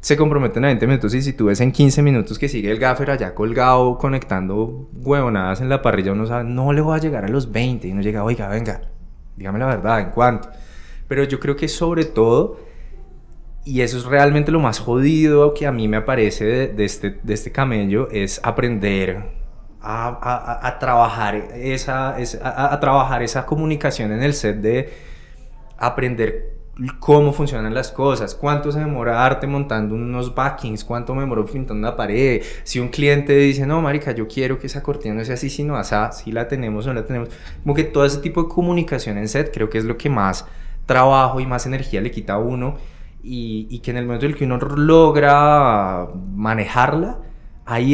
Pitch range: 110-140 Hz